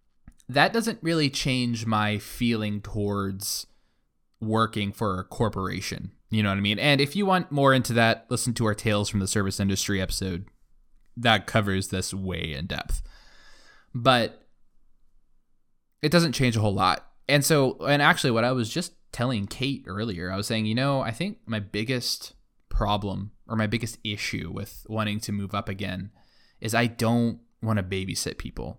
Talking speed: 175 wpm